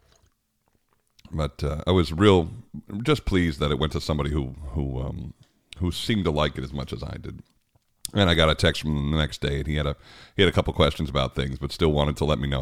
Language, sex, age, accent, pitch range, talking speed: English, male, 40-59, American, 75-100 Hz, 250 wpm